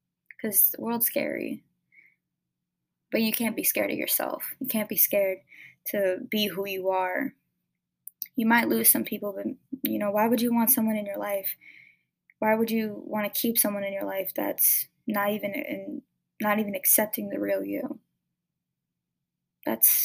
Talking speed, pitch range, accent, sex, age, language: 170 wpm, 205-280 Hz, American, female, 10-29, English